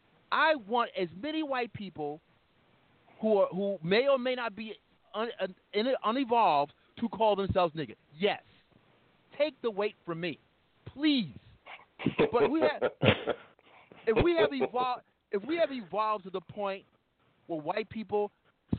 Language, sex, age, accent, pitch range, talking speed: English, male, 40-59, American, 200-275 Hz, 145 wpm